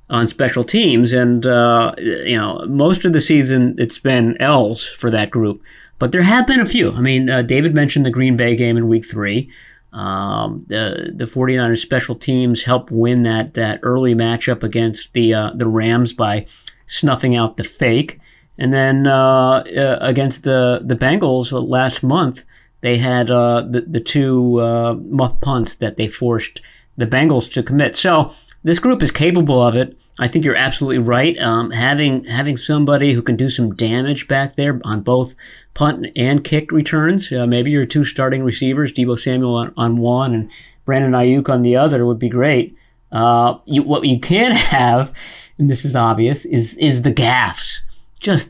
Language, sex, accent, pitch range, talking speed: English, male, American, 120-140 Hz, 180 wpm